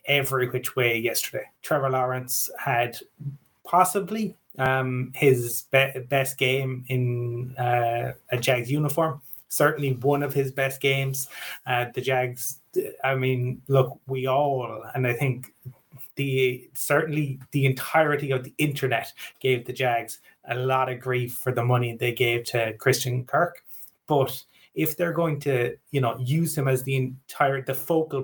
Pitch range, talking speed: 125-145 Hz, 150 wpm